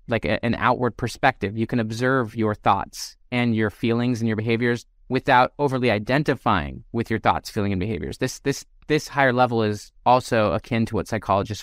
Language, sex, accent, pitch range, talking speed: English, male, American, 110-140 Hz, 185 wpm